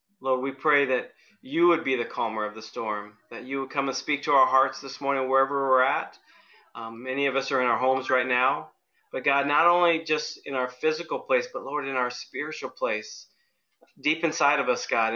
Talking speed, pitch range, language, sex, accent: 220 wpm, 130-170 Hz, English, male, American